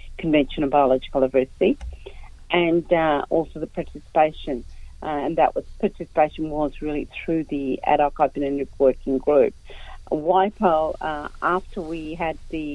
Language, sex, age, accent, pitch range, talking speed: English, female, 40-59, Australian, 145-165 Hz, 130 wpm